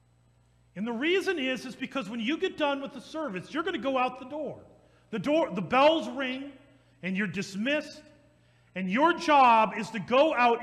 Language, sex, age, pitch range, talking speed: English, male, 40-59, 170-275 Hz, 200 wpm